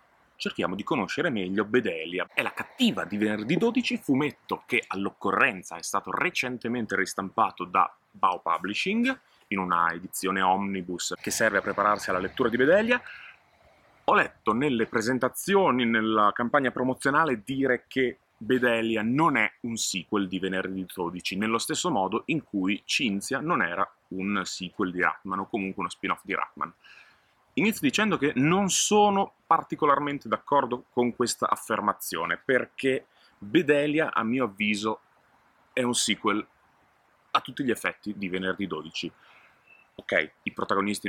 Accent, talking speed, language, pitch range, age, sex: native, 140 wpm, Italian, 100-135 Hz, 30-49, male